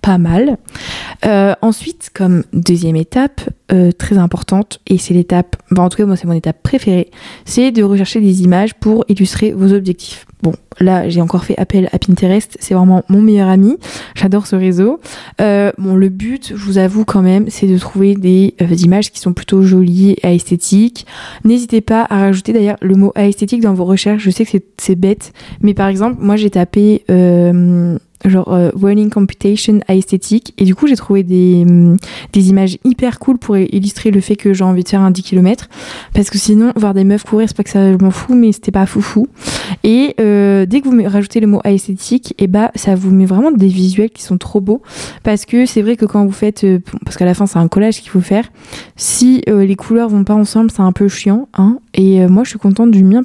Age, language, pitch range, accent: 20-39, French, 185-215 Hz, French